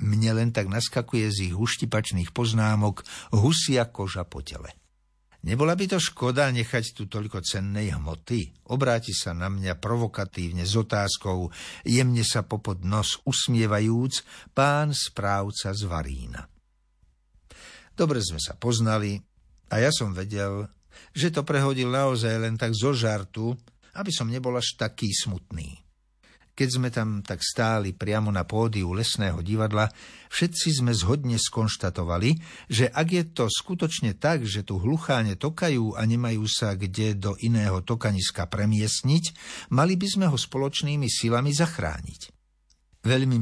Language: Slovak